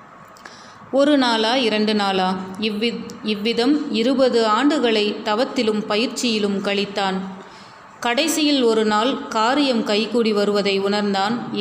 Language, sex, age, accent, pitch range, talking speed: Tamil, female, 30-49, native, 205-245 Hz, 95 wpm